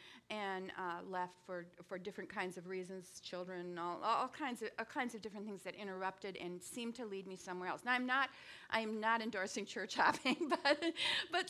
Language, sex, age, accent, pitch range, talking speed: English, female, 50-69, American, 190-245 Hz, 200 wpm